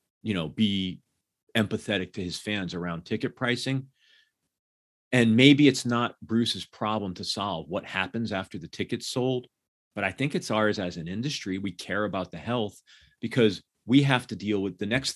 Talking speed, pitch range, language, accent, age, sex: 180 wpm, 90-115 Hz, English, American, 40-59, male